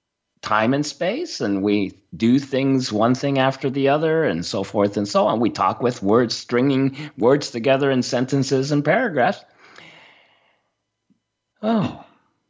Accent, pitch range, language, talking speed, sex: American, 130-175 Hz, English, 145 wpm, male